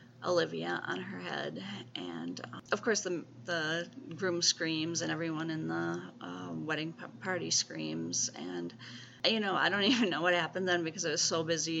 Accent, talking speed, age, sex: American, 185 wpm, 30-49, female